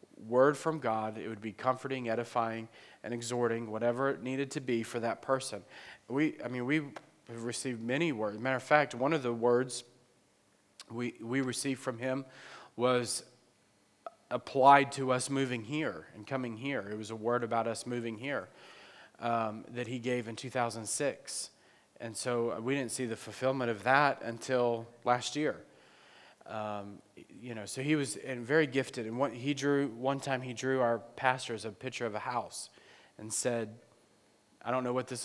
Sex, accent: male, American